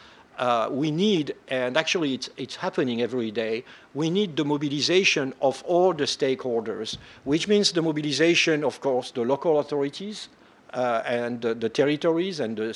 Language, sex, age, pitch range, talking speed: English, male, 50-69, 125-155 Hz, 160 wpm